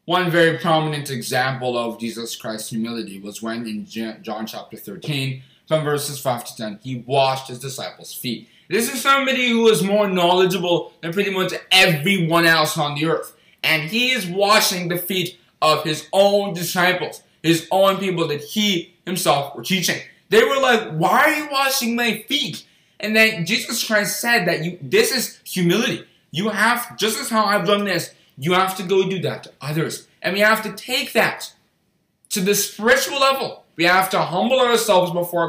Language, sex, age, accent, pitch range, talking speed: English, male, 20-39, American, 155-215 Hz, 185 wpm